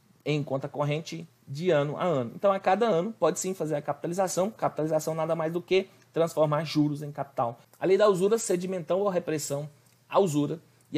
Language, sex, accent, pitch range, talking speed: Portuguese, male, Brazilian, 145-195 Hz, 190 wpm